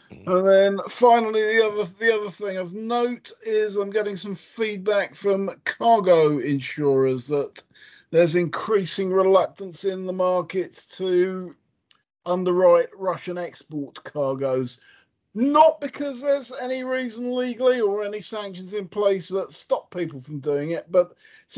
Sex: male